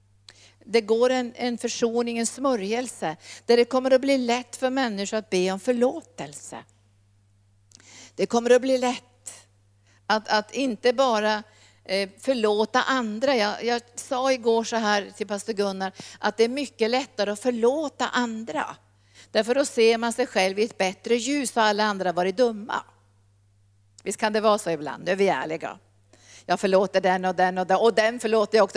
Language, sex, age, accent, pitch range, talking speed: Swedish, female, 50-69, native, 175-235 Hz, 175 wpm